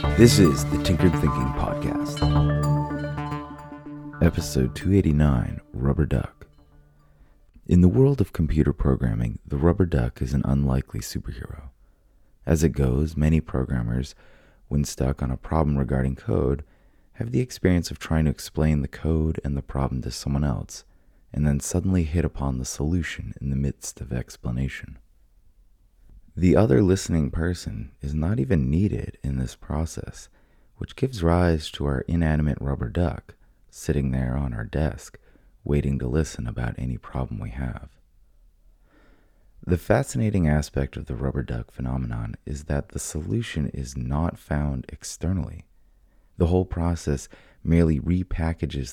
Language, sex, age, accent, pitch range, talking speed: English, male, 30-49, American, 70-90 Hz, 140 wpm